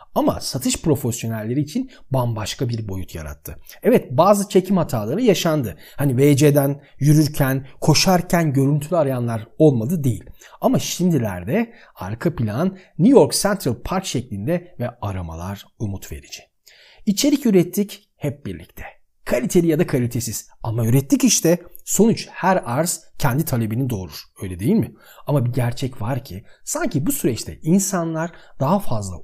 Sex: male